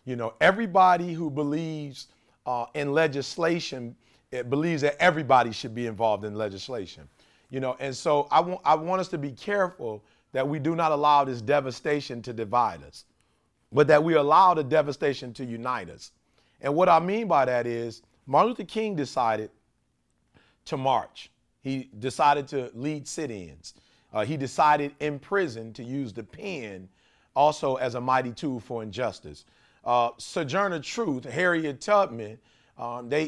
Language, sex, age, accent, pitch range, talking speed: English, male, 40-59, American, 125-160 Hz, 155 wpm